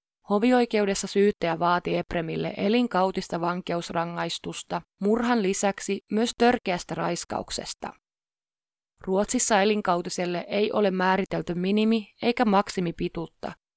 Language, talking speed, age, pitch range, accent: Finnish, 85 wpm, 20-39, 180-215 Hz, native